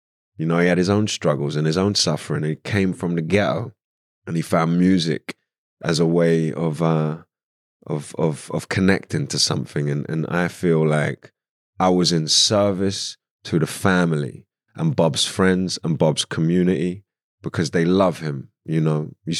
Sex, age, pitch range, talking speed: male, 20-39, 75-90 Hz, 175 wpm